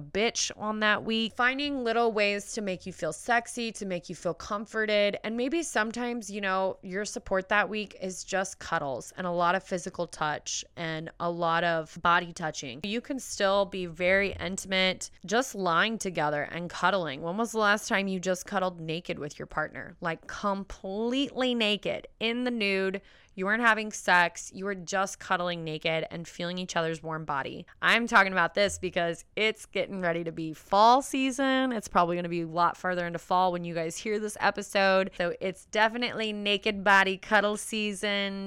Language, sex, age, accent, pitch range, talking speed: English, female, 20-39, American, 175-215 Hz, 185 wpm